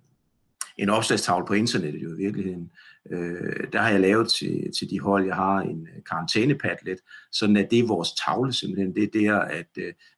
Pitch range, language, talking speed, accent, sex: 95-110 Hz, Danish, 190 wpm, native, male